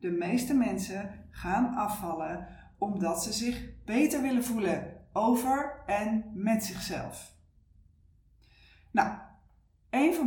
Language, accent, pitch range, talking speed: Dutch, Dutch, 180-255 Hz, 105 wpm